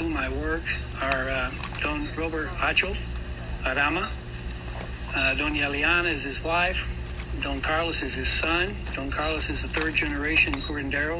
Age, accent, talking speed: 60-79, American, 140 wpm